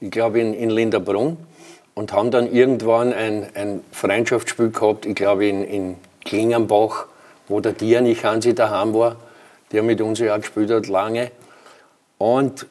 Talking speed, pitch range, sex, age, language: 160 wpm, 110-140 Hz, male, 50-69, German